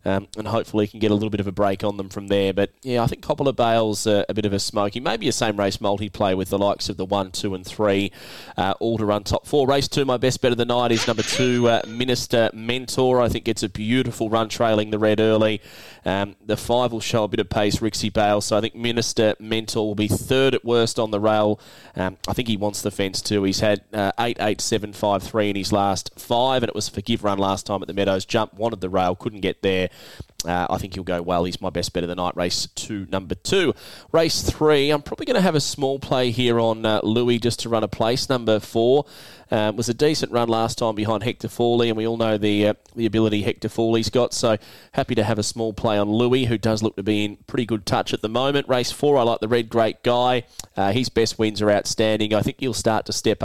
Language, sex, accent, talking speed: English, male, Australian, 255 wpm